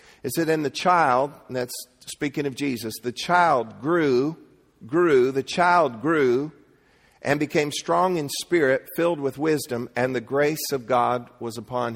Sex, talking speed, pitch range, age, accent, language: male, 160 wpm, 140-170 Hz, 50-69, American, English